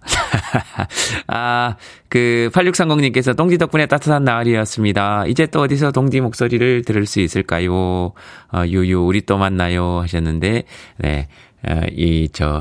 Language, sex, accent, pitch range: Korean, male, native, 80-115 Hz